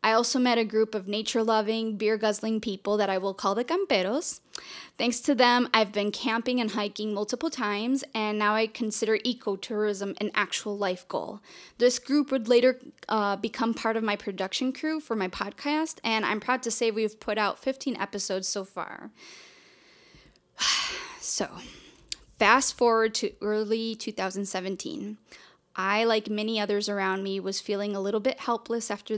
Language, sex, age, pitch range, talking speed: English, female, 10-29, 200-245 Hz, 165 wpm